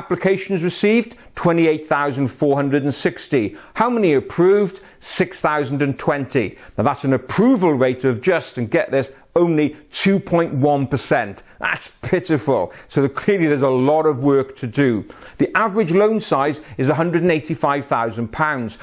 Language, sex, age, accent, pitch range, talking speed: English, male, 40-59, British, 130-175 Hz, 115 wpm